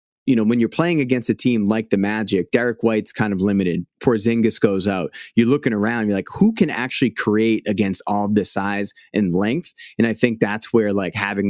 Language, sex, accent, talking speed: English, male, American, 215 wpm